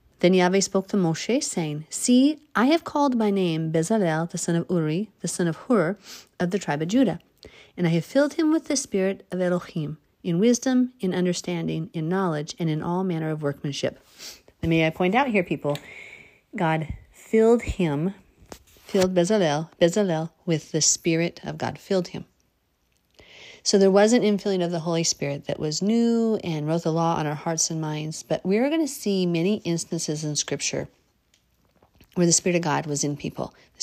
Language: English